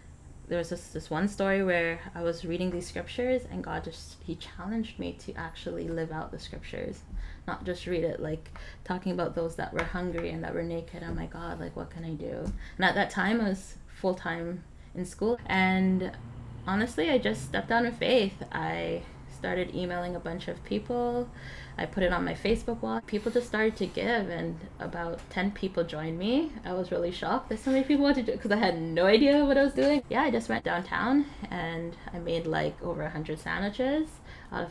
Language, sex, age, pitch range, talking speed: English, female, 10-29, 165-215 Hz, 215 wpm